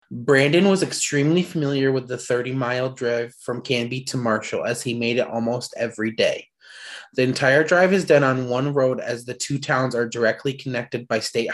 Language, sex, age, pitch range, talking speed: English, male, 20-39, 125-145 Hz, 190 wpm